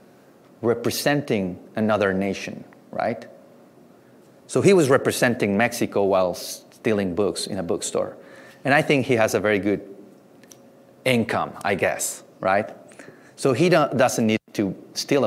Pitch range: 100-125 Hz